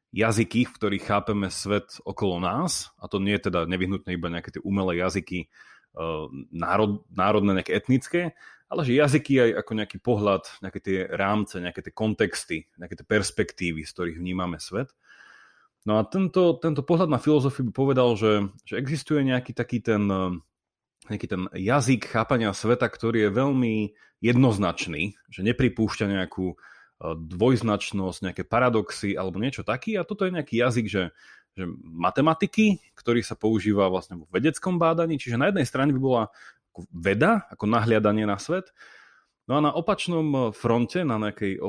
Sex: male